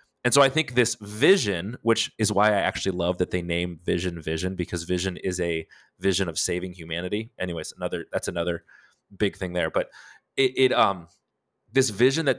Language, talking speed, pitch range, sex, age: English, 190 wpm, 95-120 Hz, male, 30-49